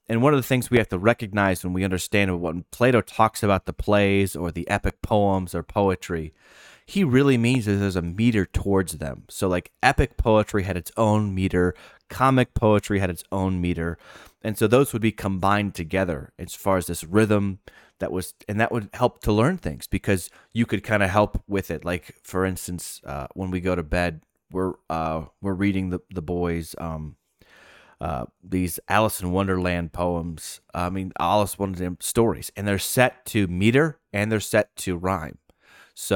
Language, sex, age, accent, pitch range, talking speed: English, male, 30-49, American, 90-105 Hz, 190 wpm